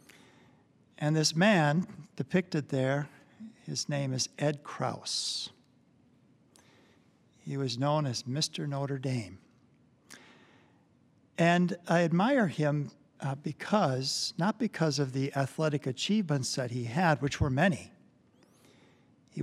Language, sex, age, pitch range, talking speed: English, male, 60-79, 135-160 Hz, 110 wpm